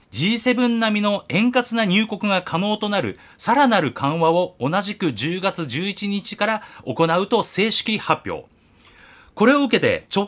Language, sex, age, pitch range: Japanese, male, 30-49, 155-230 Hz